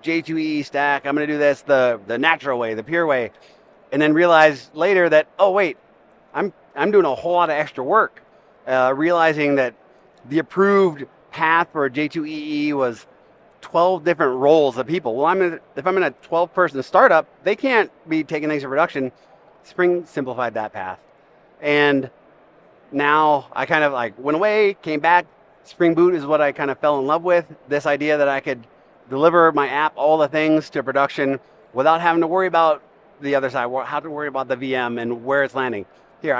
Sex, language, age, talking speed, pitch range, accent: male, English, 30-49, 195 wpm, 135-165 Hz, American